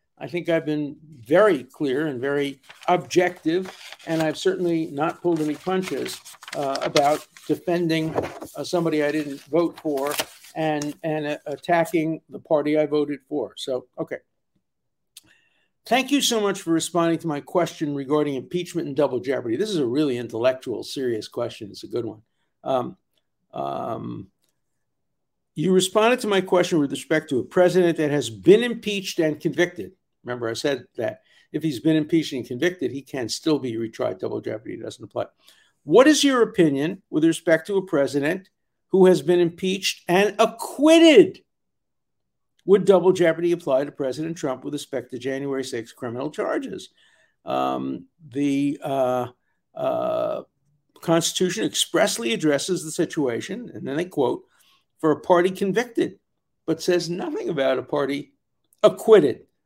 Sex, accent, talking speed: male, American, 150 wpm